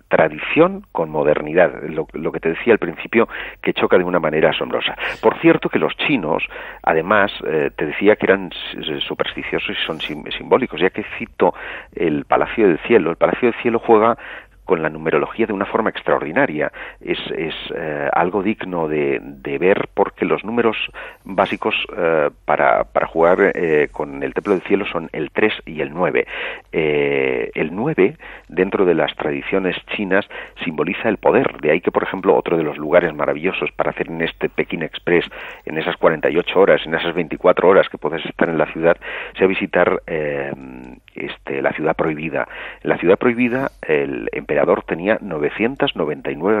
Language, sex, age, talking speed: English, male, 40-59, 175 wpm